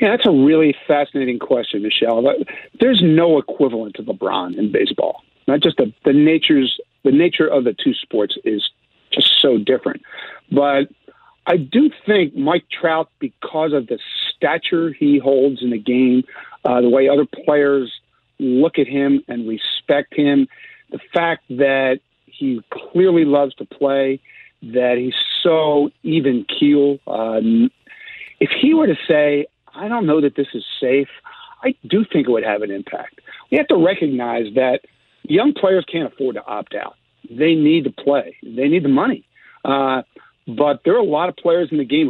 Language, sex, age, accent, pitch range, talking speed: English, male, 50-69, American, 130-175 Hz, 170 wpm